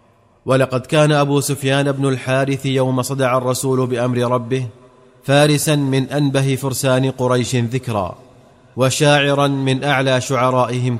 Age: 30-49